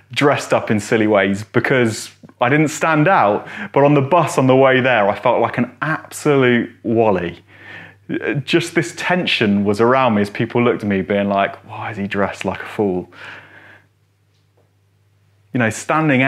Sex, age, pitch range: male, 30-49, 100-145 Hz